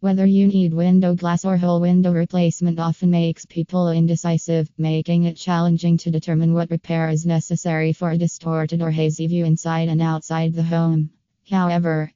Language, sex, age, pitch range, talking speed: English, female, 20-39, 160-175 Hz, 170 wpm